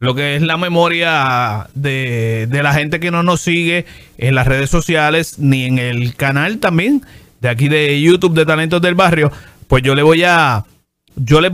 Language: Spanish